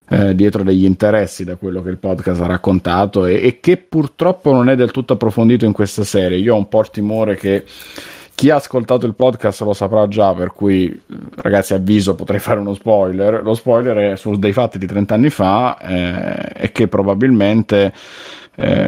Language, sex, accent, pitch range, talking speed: Italian, male, native, 95-110 Hz, 195 wpm